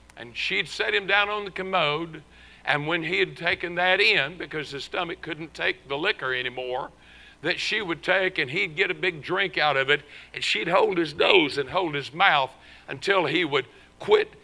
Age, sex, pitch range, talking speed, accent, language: 60-79, male, 145-195 Hz, 205 wpm, American, English